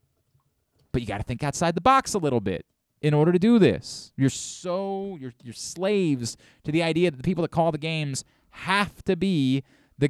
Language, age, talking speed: English, 30-49, 210 wpm